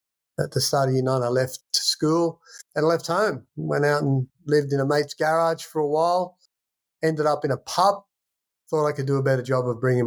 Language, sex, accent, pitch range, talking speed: English, male, Australian, 120-145 Hz, 225 wpm